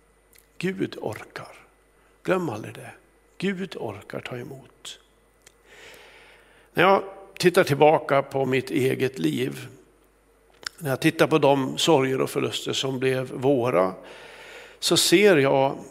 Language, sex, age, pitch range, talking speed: Swedish, male, 60-79, 135-180 Hz, 115 wpm